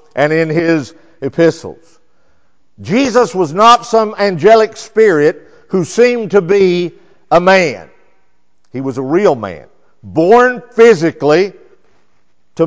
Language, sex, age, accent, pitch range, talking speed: English, male, 50-69, American, 130-195 Hz, 115 wpm